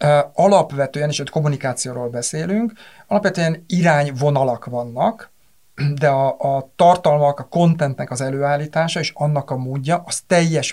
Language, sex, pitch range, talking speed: Hungarian, male, 135-165 Hz, 125 wpm